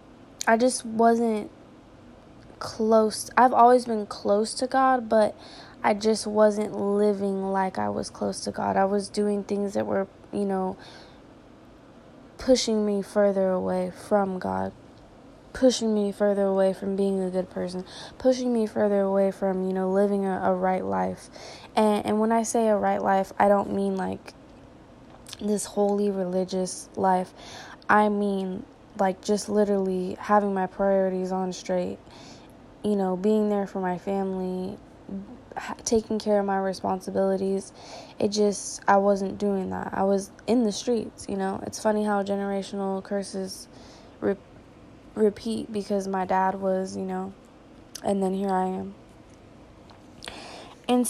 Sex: female